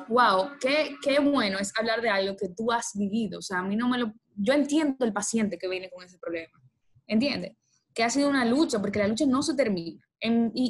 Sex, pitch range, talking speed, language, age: female, 200-270 Hz, 235 wpm, Spanish, 10-29